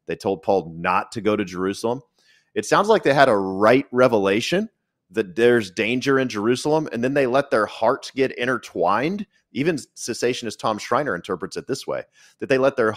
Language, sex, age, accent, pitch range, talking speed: English, male, 30-49, American, 115-165 Hz, 190 wpm